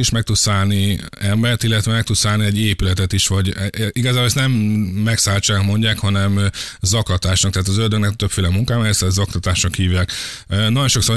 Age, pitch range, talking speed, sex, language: 20-39, 100-110 Hz, 155 wpm, male, Hungarian